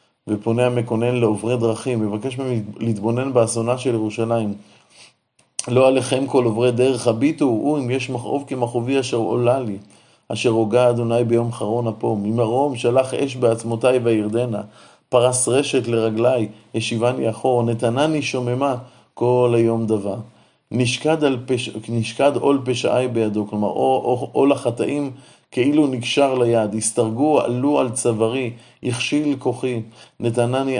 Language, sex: Hebrew, male